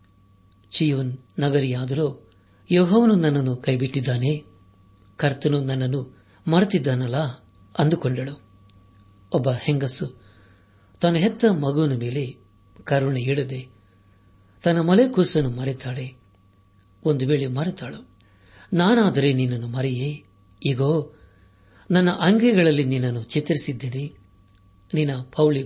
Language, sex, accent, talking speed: Kannada, male, native, 75 wpm